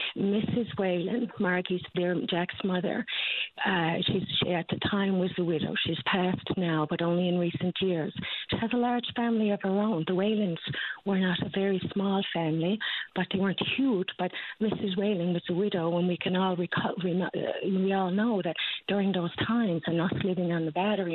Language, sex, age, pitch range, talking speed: English, female, 50-69, 165-200 Hz, 190 wpm